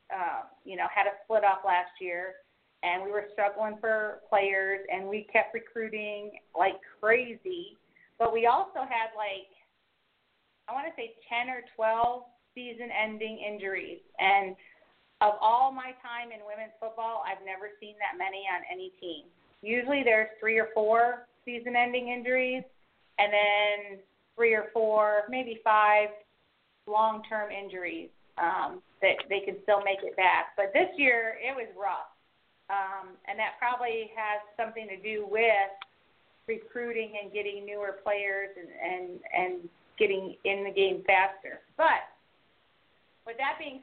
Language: English